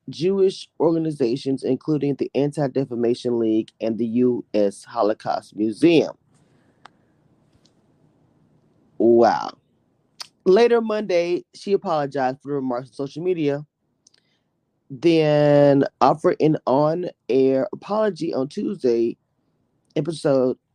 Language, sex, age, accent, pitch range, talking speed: English, male, 20-39, American, 125-160 Hz, 85 wpm